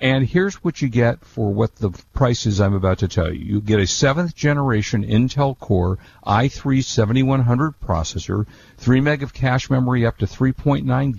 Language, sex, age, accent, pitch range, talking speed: English, male, 50-69, American, 100-130 Hz, 165 wpm